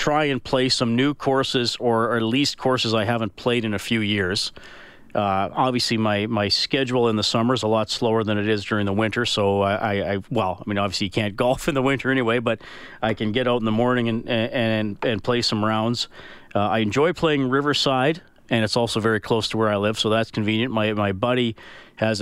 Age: 40-59